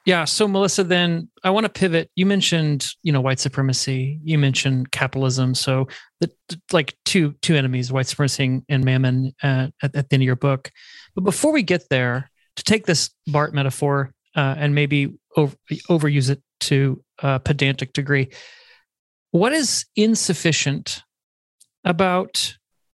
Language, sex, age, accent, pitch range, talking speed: English, male, 30-49, American, 135-175 Hz, 150 wpm